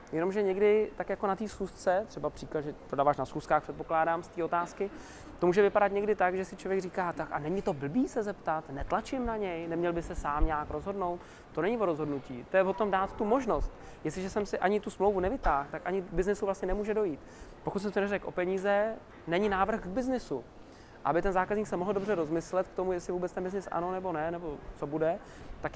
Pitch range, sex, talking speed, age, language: 160-200 Hz, male, 225 wpm, 20-39, Czech